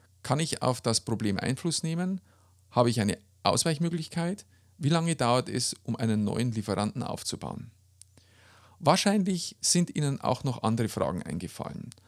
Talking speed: 140 wpm